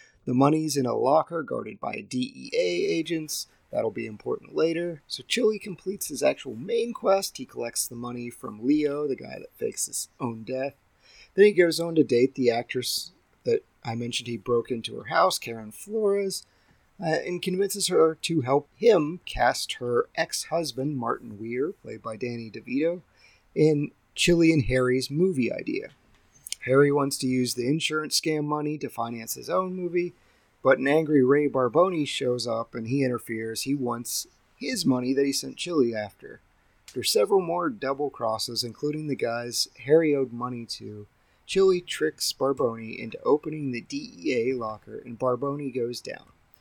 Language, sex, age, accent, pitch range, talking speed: English, male, 30-49, American, 120-165 Hz, 165 wpm